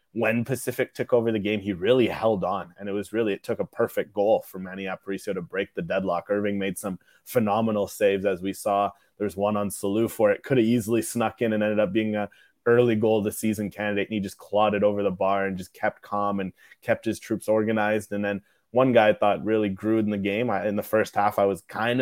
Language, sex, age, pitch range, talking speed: English, male, 20-39, 100-110 Hz, 250 wpm